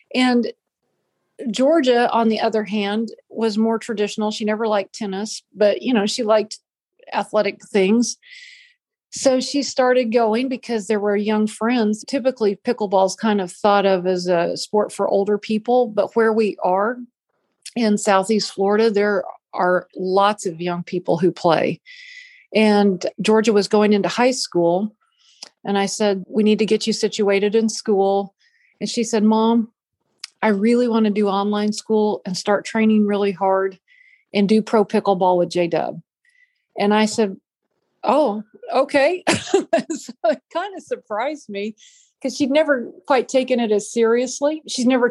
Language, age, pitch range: English, 40-59, 205-250 Hz